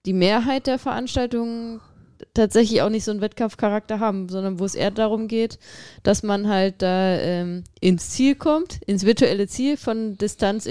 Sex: female